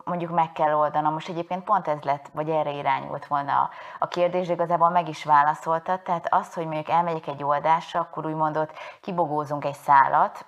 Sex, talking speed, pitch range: female, 185 wpm, 145-170 Hz